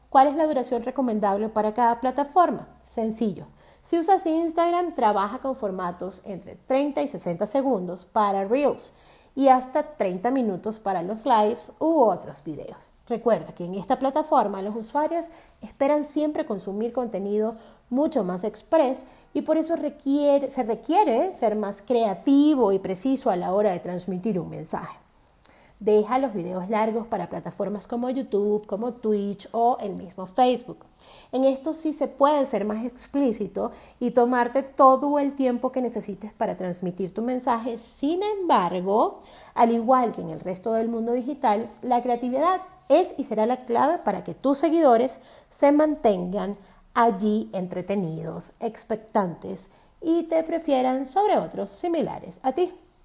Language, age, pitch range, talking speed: Spanish, 40-59, 210-280 Hz, 150 wpm